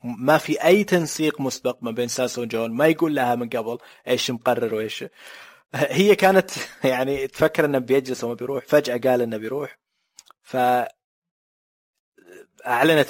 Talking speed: 135 wpm